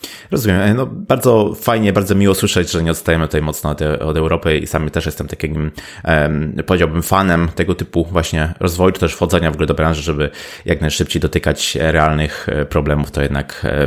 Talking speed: 175 wpm